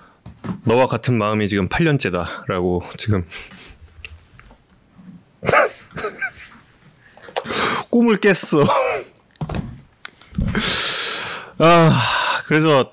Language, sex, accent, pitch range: Korean, male, native, 95-130 Hz